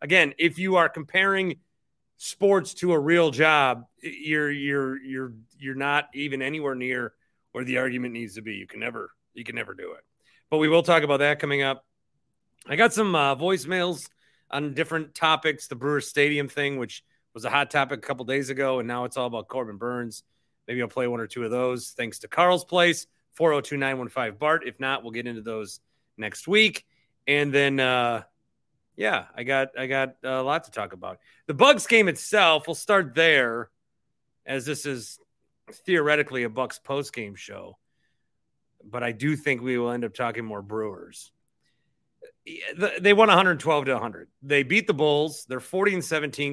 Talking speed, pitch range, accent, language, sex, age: 185 wpm, 125-160 Hz, American, English, male, 30-49